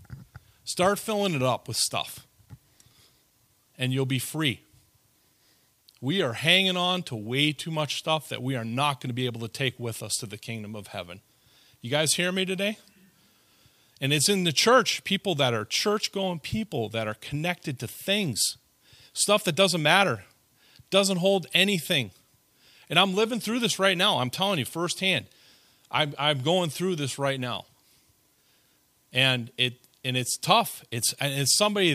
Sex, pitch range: male, 125-195 Hz